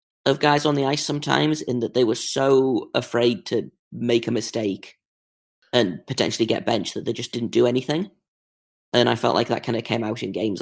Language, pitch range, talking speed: English, 115-130 Hz, 210 wpm